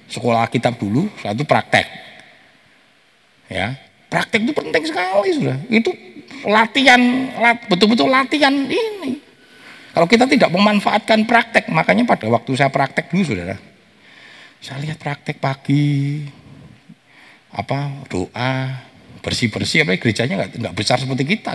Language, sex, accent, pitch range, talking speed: Indonesian, male, native, 125-195 Hz, 120 wpm